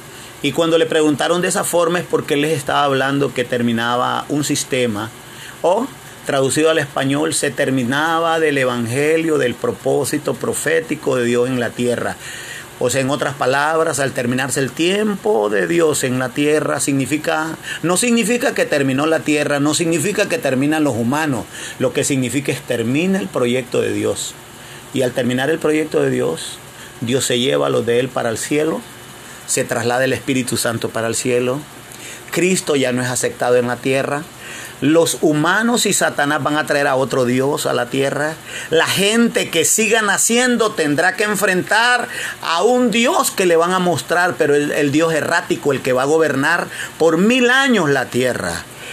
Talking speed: 180 wpm